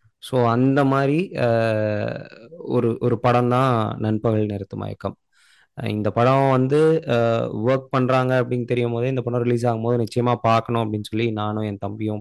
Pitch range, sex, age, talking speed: 110-130 Hz, male, 20-39, 145 wpm